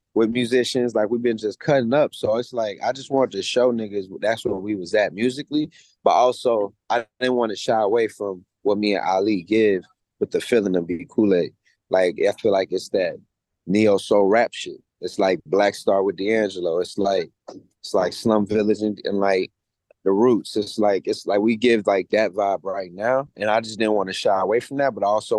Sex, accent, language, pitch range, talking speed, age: male, American, English, 105-140 Hz, 220 wpm, 20-39